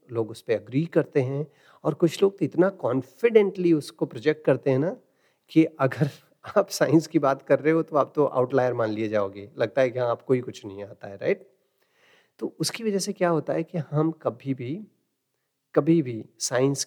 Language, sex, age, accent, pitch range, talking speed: Hindi, male, 40-59, native, 125-155 Hz, 205 wpm